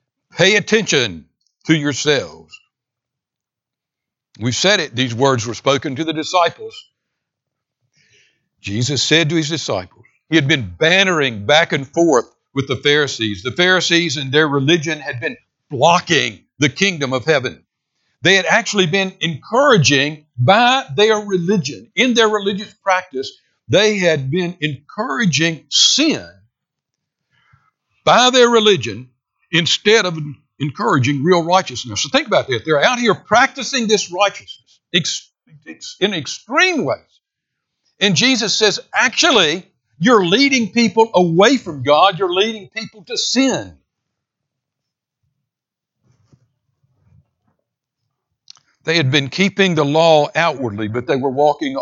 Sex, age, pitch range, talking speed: male, 60-79, 135-205 Hz, 120 wpm